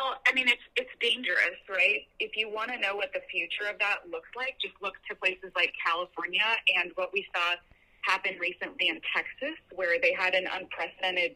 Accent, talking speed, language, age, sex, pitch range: American, 200 wpm, English, 20-39, female, 180-255 Hz